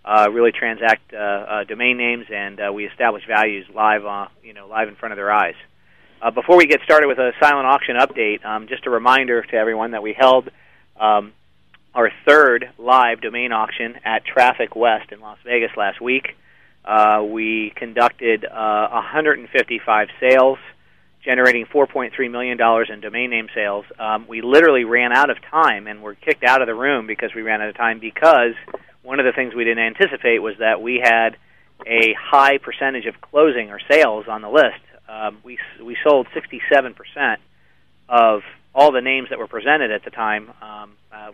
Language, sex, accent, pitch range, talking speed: English, male, American, 105-125 Hz, 185 wpm